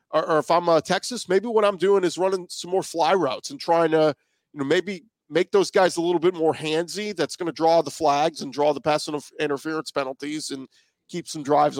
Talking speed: 230 wpm